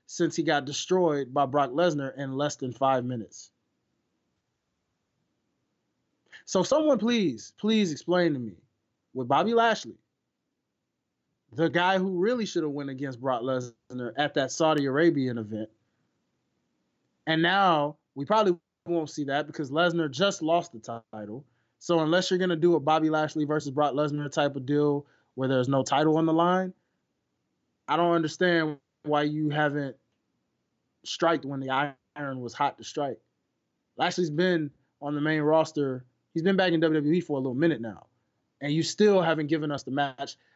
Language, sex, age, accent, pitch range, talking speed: English, male, 20-39, American, 135-170 Hz, 165 wpm